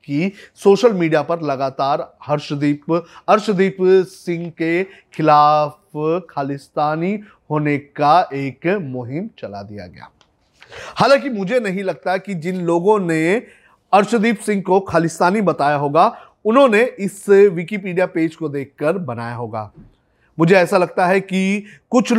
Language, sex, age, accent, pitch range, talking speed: Hindi, male, 30-49, native, 150-190 Hz, 120 wpm